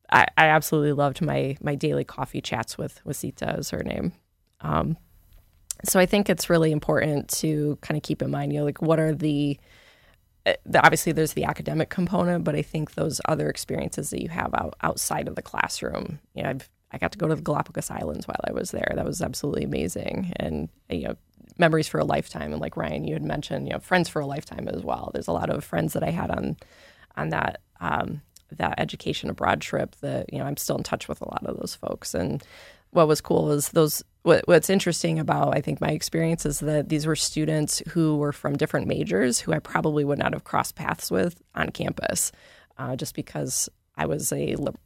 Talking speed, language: 220 wpm, English